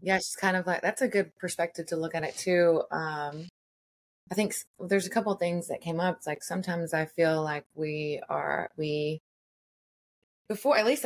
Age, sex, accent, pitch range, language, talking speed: 20-39, female, American, 140-170 Hz, English, 205 wpm